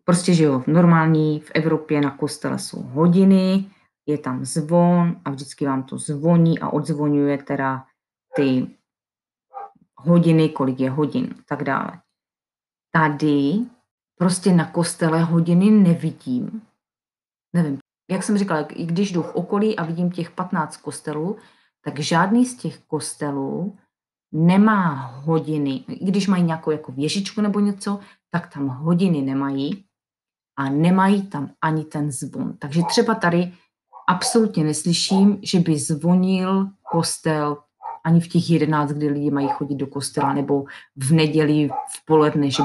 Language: Czech